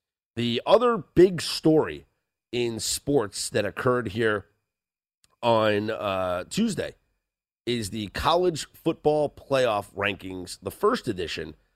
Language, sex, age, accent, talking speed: English, male, 30-49, American, 105 wpm